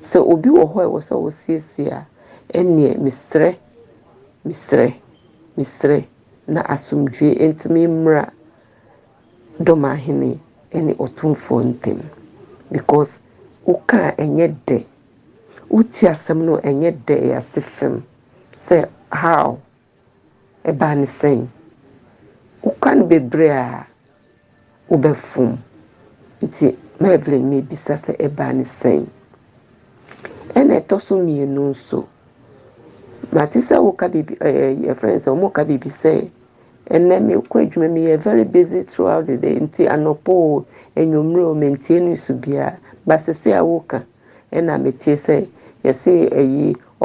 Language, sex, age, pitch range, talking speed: English, female, 50-69, 140-165 Hz, 110 wpm